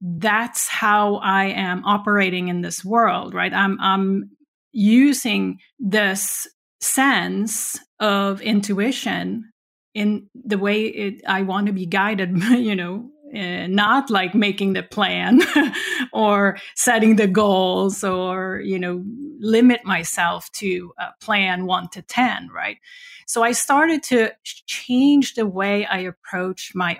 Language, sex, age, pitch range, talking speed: English, female, 30-49, 190-235 Hz, 130 wpm